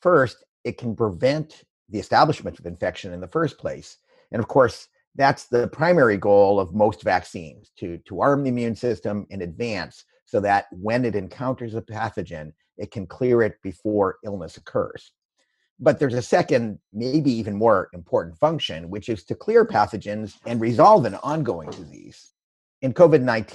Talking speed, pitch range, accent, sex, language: 165 wpm, 105-140 Hz, American, male, English